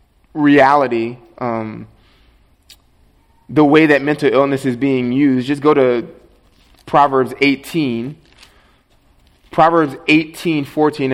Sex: male